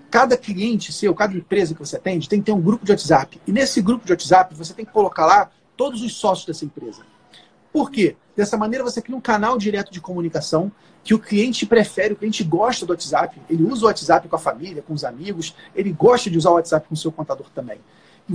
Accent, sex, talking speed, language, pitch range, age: Brazilian, male, 235 wpm, Portuguese, 175-225 Hz, 40-59